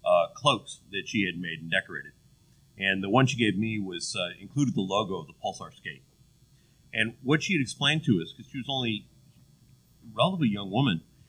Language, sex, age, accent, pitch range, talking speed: English, male, 50-69, American, 110-135 Hz, 200 wpm